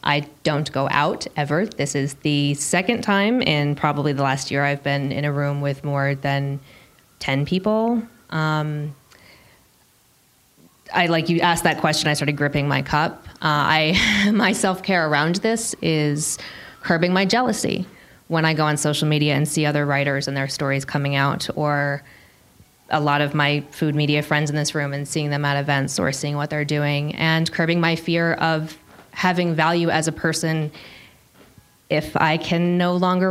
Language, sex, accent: English, female, American